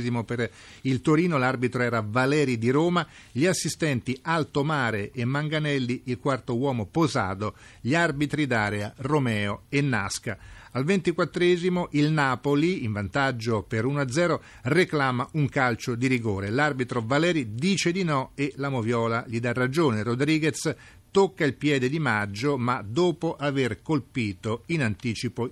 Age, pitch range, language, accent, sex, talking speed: 50-69, 115-150 Hz, Italian, native, male, 140 wpm